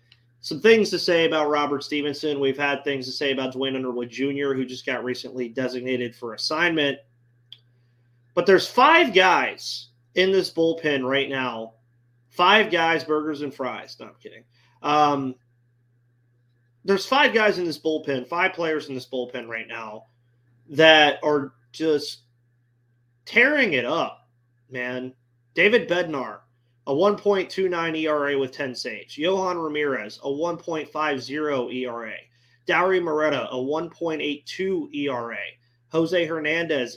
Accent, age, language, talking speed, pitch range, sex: American, 30-49, English, 130 wpm, 120-160 Hz, male